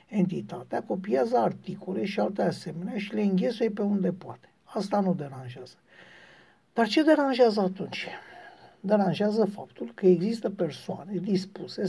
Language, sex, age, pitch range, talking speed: Romanian, male, 60-79, 175-215 Hz, 125 wpm